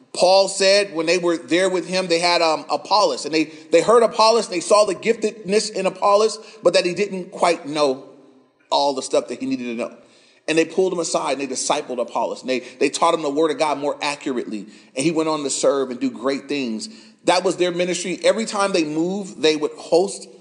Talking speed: 230 wpm